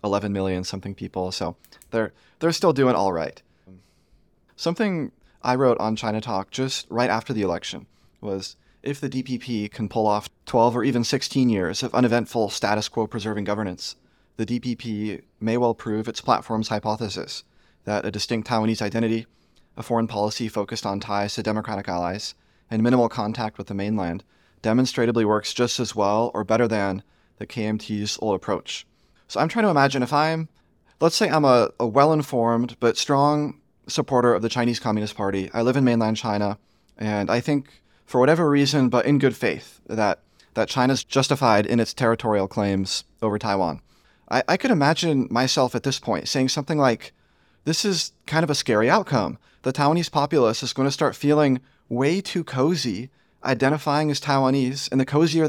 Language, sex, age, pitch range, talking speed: English, male, 30-49, 105-135 Hz, 175 wpm